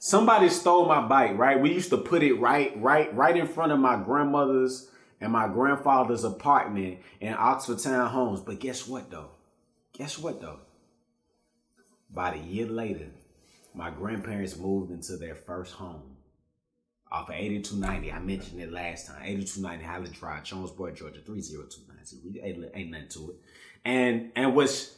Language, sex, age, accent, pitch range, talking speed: English, male, 30-49, American, 95-125 Hz, 160 wpm